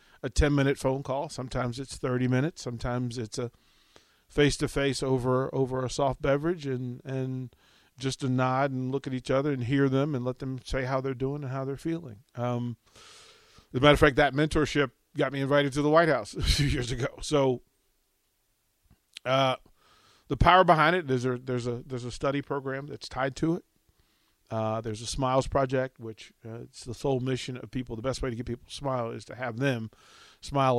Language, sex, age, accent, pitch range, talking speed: English, male, 40-59, American, 120-140 Hz, 205 wpm